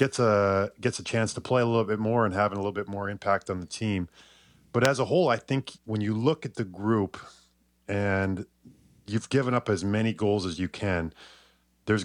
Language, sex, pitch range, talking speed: English, male, 95-110 Hz, 220 wpm